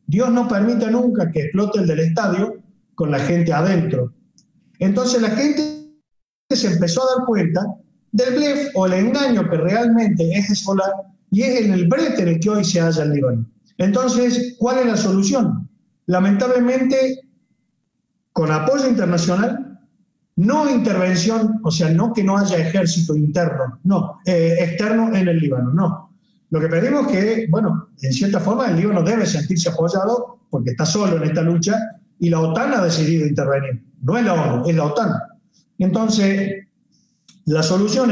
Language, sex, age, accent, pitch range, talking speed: Spanish, male, 50-69, Argentinian, 170-225 Hz, 165 wpm